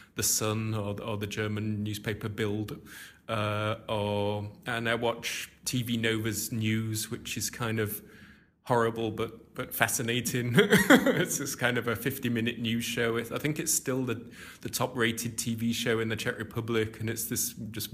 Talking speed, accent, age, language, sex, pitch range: 175 wpm, British, 20-39, English, male, 110-120 Hz